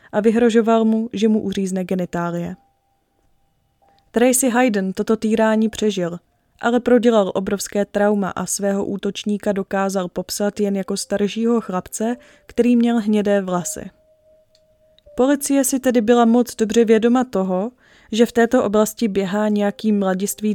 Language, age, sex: Czech, 20-39, female